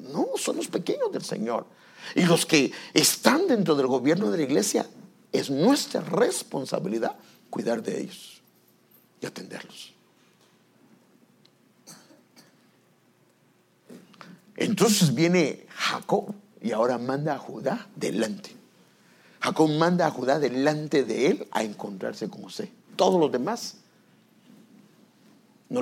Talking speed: 110 wpm